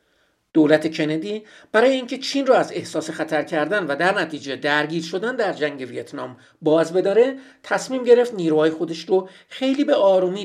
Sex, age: male, 50-69